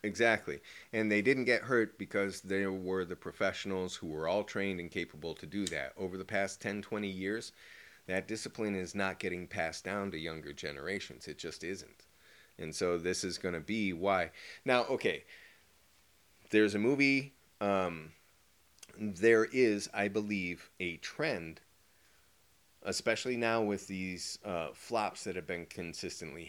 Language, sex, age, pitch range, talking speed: English, male, 30-49, 85-105 Hz, 155 wpm